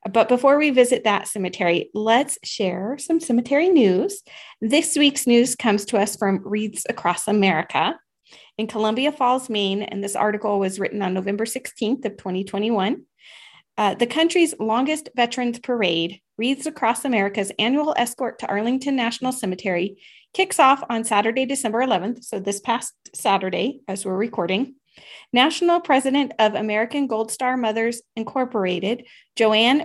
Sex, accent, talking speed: female, American, 145 wpm